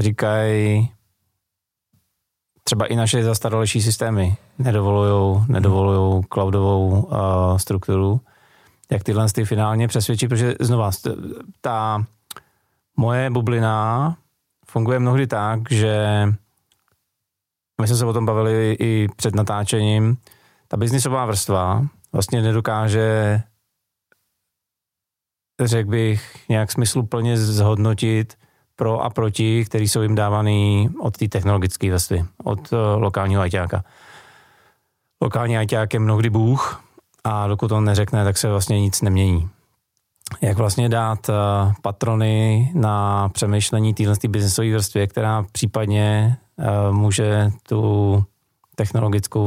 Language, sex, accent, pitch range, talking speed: Czech, male, native, 100-115 Hz, 105 wpm